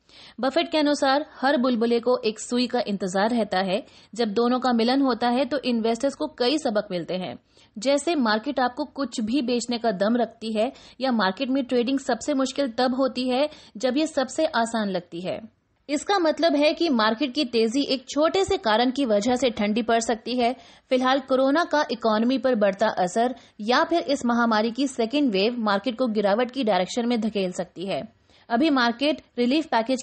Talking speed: 190 wpm